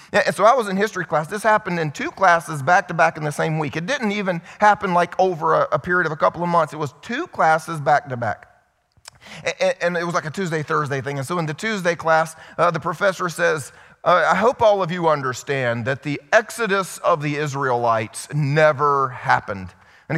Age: 30-49